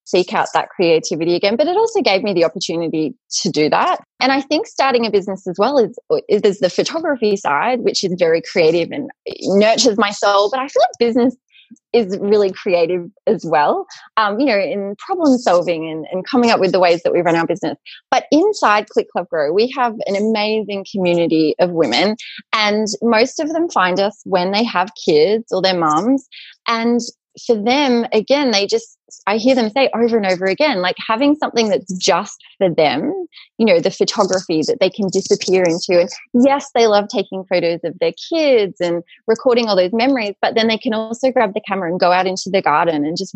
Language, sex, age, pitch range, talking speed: English, female, 20-39, 180-245 Hz, 205 wpm